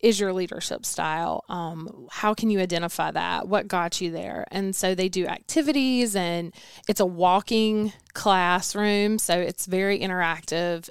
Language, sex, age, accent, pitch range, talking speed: English, female, 20-39, American, 175-205 Hz, 155 wpm